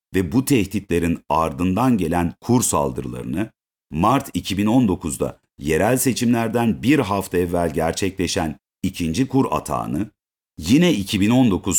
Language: Turkish